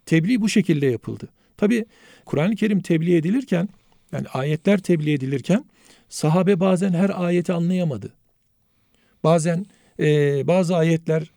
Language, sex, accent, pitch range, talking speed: Turkish, male, native, 145-190 Hz, 115 wpm